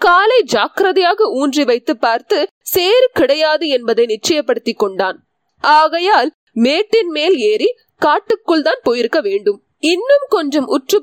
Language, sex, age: Tamil, female, 20-39